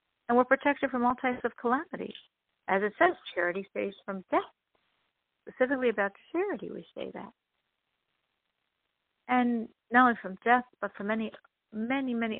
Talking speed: 150 wpm